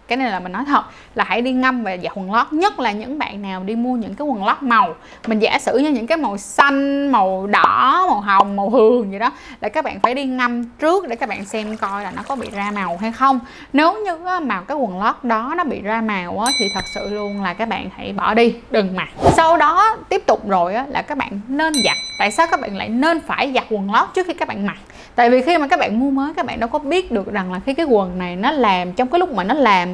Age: 20-39